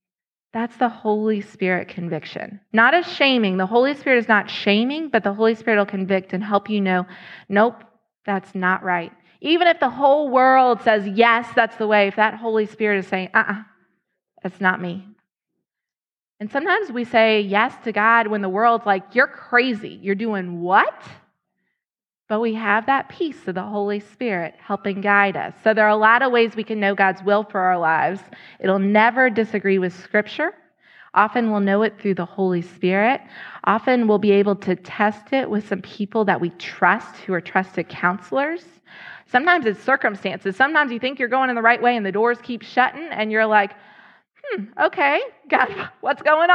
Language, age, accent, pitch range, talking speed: English, 20-39, American, 195-240 Hz, 190 wpm